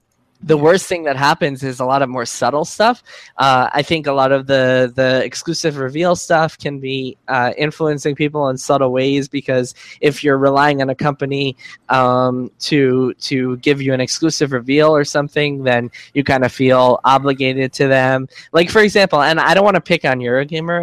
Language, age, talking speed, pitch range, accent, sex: English, 10-29, 195 wpm, 130-165 Hz, American, male